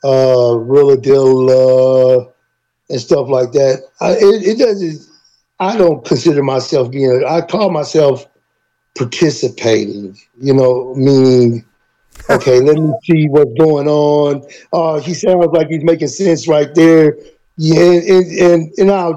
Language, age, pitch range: English, 60-79, 135-170 Hz